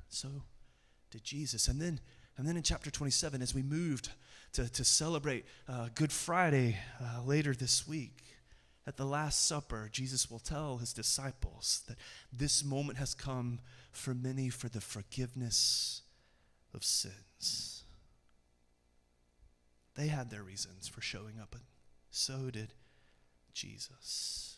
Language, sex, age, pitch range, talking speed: English, male, 30-49, 115-160 Hz, 135 wpm